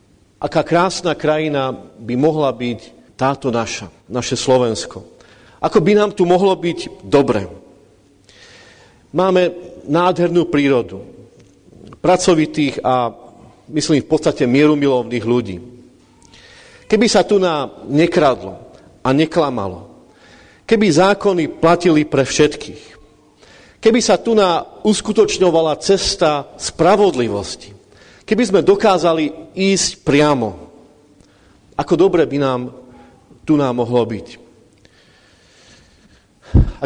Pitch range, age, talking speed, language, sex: 125-180 Hz, 40-59, 100 wpm, Slovak, male